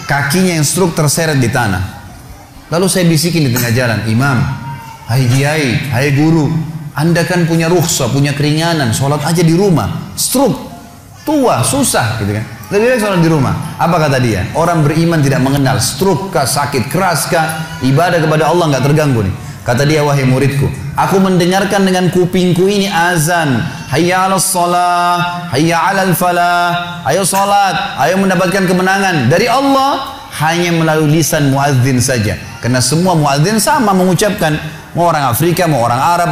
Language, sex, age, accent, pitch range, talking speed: Indonesian, male, 30-49, native, 135-190 Hz, 150 wpm